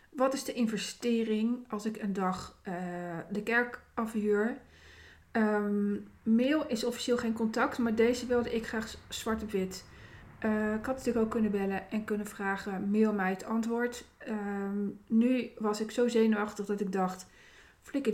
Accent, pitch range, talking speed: Dutch, 200-240 Hz, 165 wpm